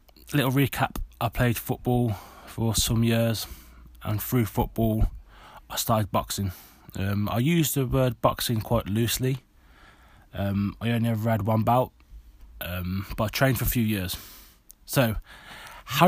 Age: 20-39